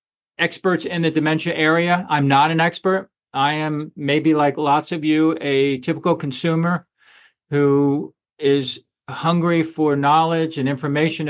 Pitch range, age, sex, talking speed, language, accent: 130-155 Hz, 50-69, male, 140 wpm, English, American